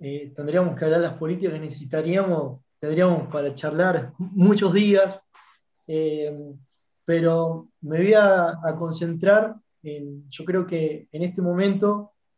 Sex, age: male, 20-39